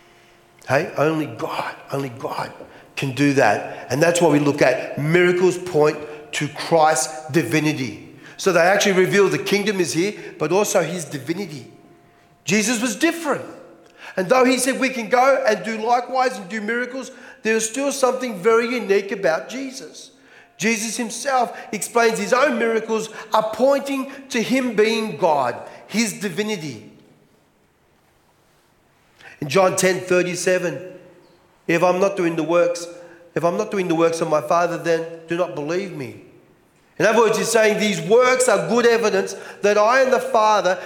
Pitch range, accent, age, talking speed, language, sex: 170-240 Hz, Australian, 40-59, 160 wpm, English, male